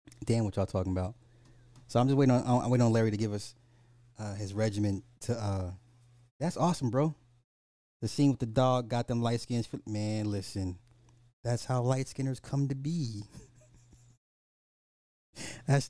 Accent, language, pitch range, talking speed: American, English, 110-145 Hz, 165 wpm